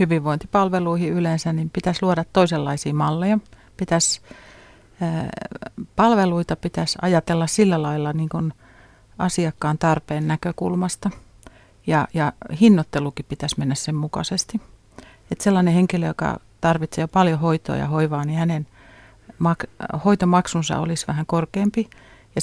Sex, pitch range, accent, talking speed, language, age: female, 155-185 Hz, native, 115 wpm, Finnish, 40-59